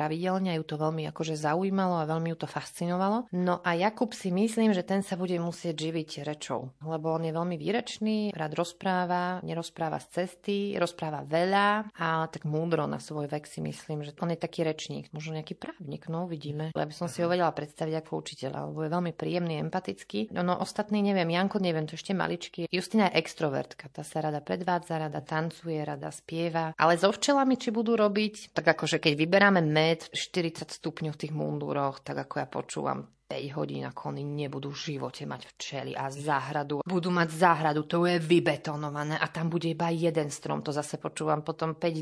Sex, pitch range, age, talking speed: female, 155-180 Hz, 30-49, 195 wpm